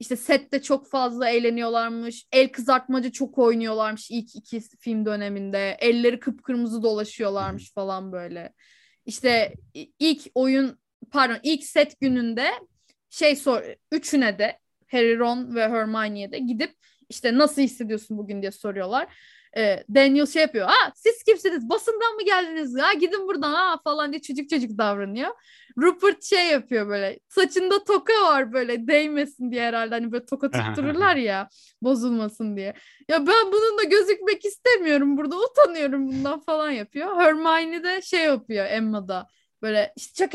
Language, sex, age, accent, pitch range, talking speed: Turkish, female, 10-29, native, 230-315 Hz, 140 wpm